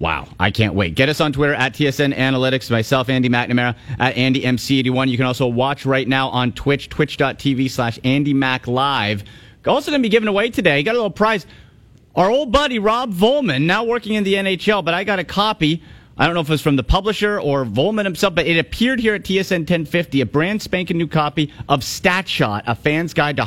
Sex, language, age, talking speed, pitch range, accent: male, English, 40-59, 210 wpm, 120-175 Hz, American